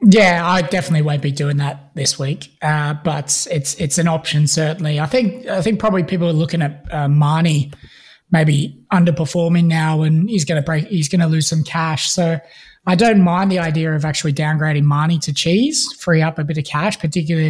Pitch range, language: 150-175 Hz, English